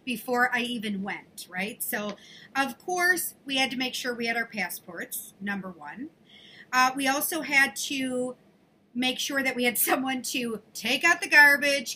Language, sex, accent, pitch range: English, female, American, 225-270 Hz